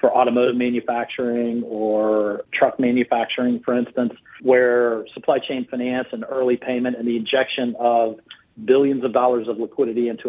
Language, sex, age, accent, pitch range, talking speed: English, male, 40-59, American, 115-130 Hz, 145 wpm